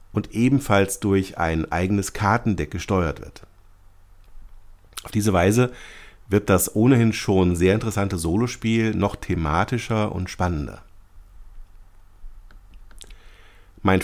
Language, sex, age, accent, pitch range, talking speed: German, male, 50-69, German, 95-115 Hz, 100 wpm